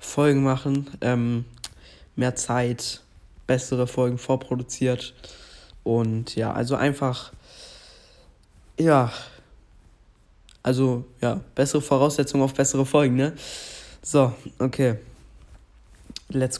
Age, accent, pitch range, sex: 20-39, German, 125-145 Hz, male